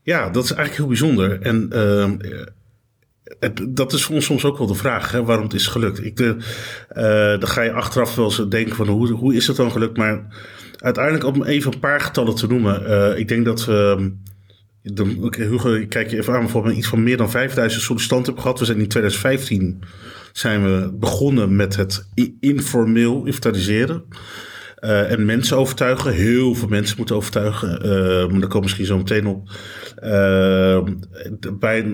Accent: Dutch